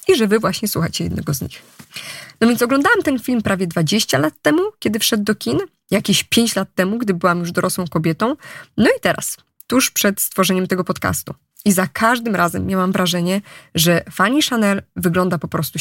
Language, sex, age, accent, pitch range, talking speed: Polish, female, 20-39, native, 180-225 Hz, 190 wpm